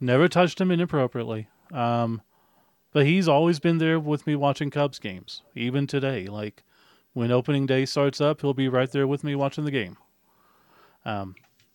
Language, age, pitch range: English, 40-59, 125-185 Hz